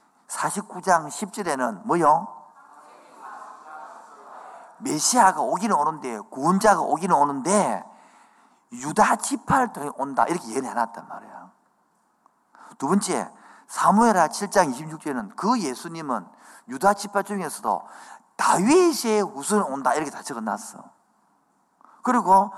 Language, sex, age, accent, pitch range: Korean, male, 50-69, native, 125-205 Hz